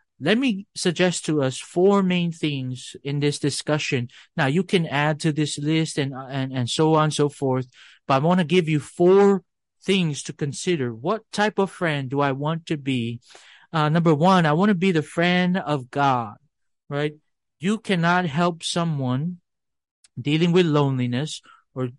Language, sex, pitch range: English, male, 135-180 Hz